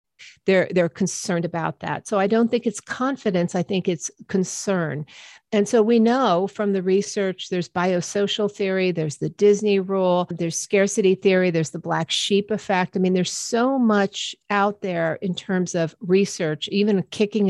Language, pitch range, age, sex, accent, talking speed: English, 175-205 Hz, 50-69, female, American, 170 wpm